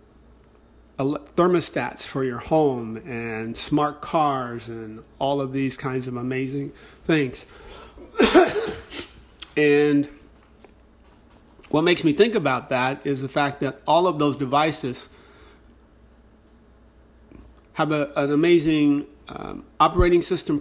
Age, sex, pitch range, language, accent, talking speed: 40-59, male, 130-150 Hz, English, American, 105 wpm